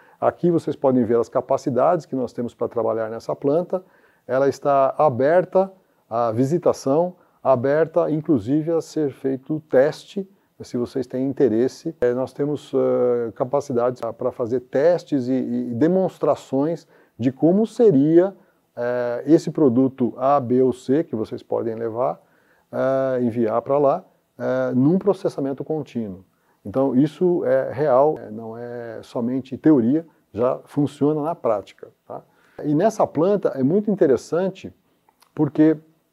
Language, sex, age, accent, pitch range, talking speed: Portuguese, male, 40-59, Brazilian, 125-160 Hz, 125 wpm